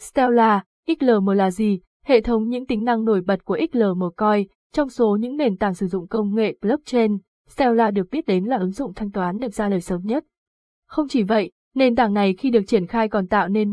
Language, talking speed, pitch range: Vietnamese, 225 wpm, 195-240 Hz